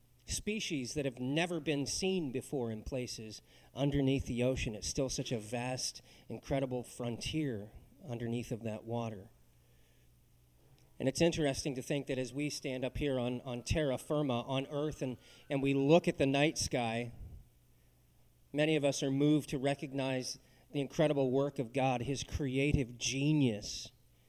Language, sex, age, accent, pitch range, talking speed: English, male, 40-59, American, 120-145 Hz, 155 wpm